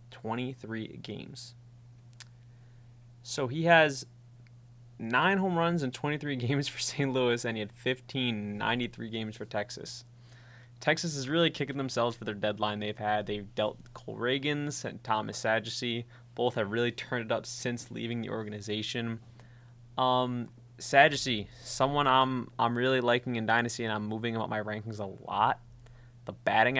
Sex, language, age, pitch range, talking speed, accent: male, English, 20-39, 120-130 Hz, 150 wpm, American